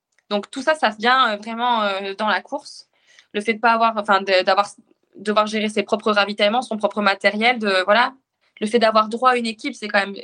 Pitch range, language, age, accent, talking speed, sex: 205-245 Hz, French, 20-39, French, 230 wpm, female